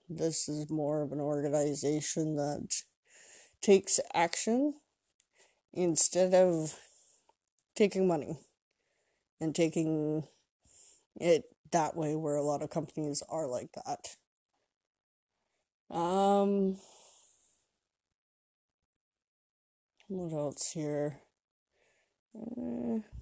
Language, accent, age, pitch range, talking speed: English, American, 20-39, 150-195 Hz, 80 wpm